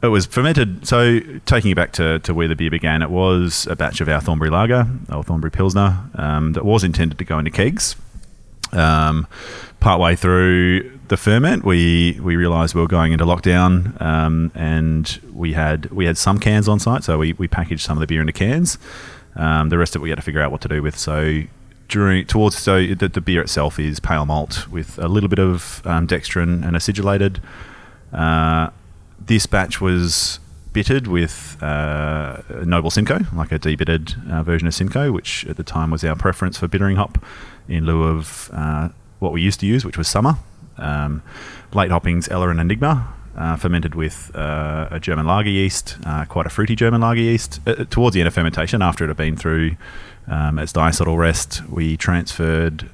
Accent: Australian